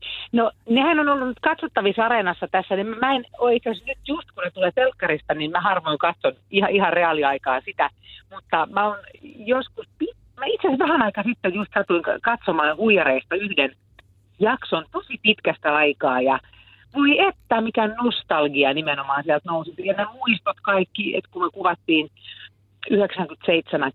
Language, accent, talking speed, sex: Finnish, native, 145 wpm, female